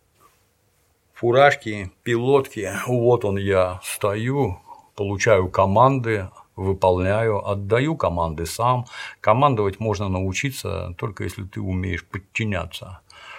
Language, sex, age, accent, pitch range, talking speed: Russian, male, 50-69, native, 90-110 Hz, 90 wpm